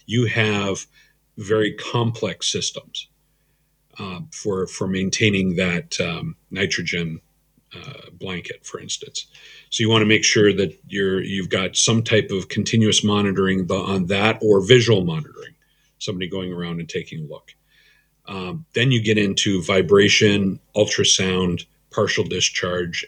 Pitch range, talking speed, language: 95-115 Hz, 135 wpm, English